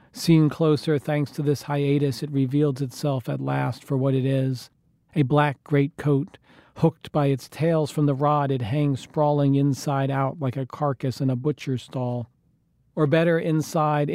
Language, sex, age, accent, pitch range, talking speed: English, male, 40-59, American, 135-155 Hz, 170 wpm